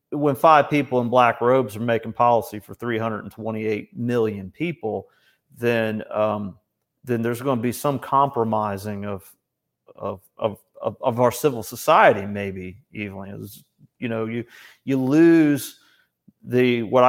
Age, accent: 40-59, American